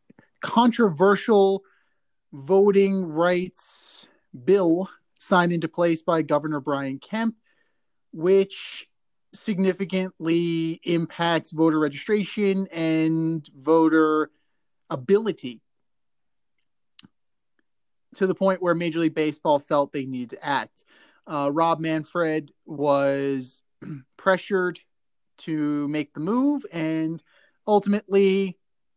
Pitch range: 155-195 Hz